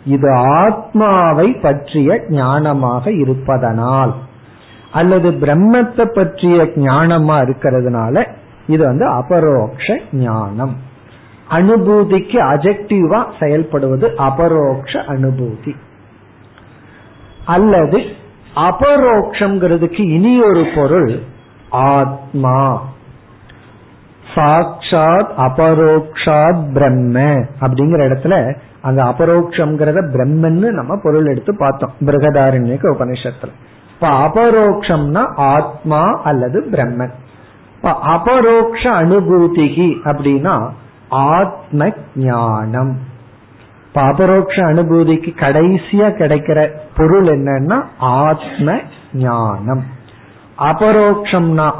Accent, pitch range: native, 130-170 Hz